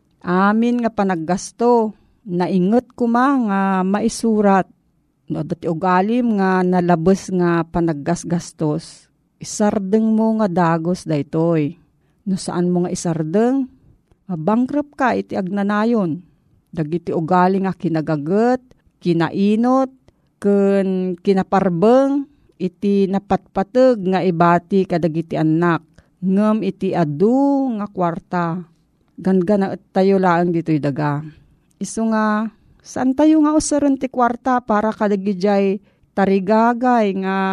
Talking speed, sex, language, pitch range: 110 wpm, female, Filipino, 175-220 Hz